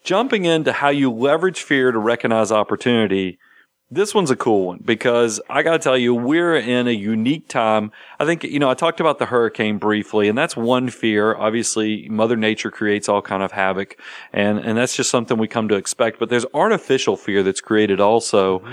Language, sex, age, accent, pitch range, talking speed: English, male, 40-59, American, 105-125 Hz, 200 wpm